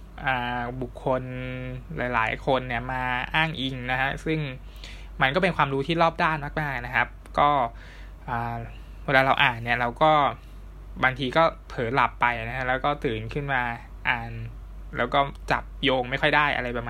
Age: 20-39